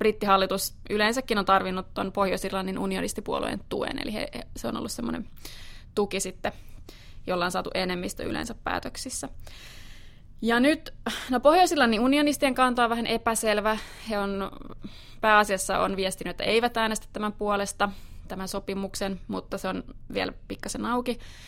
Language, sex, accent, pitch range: Finnish, female, native, 195-230 Hz